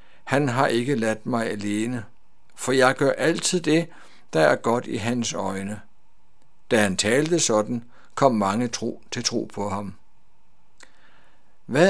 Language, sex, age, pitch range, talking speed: Danish, male, 60-79, 115-155 Hz, 140 wpm